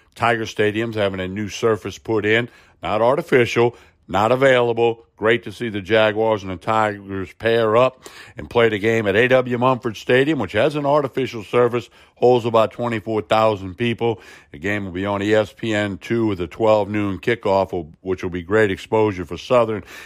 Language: English